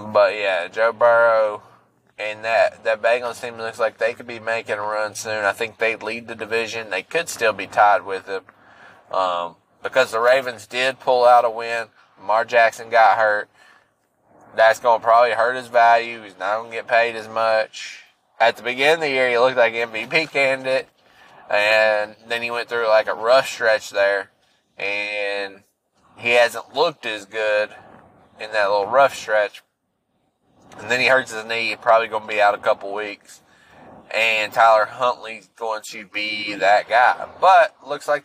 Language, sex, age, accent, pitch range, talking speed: English, male, 20-39, American, 105-125 Hz, 180 wpm